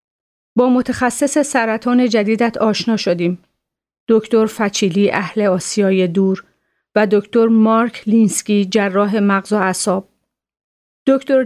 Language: Persian